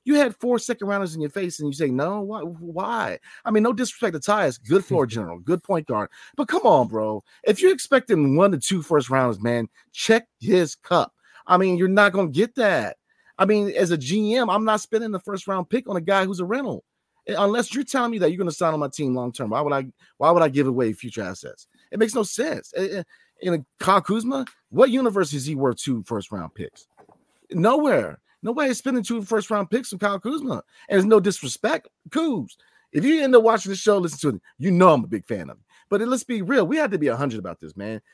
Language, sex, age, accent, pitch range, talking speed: English, male, 30-49, American, 150-230 Hz, 235 wpm